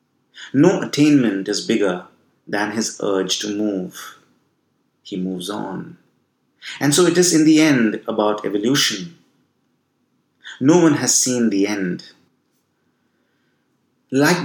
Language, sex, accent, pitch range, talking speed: English, male, Indian, 100-135 Hz, 115 wpm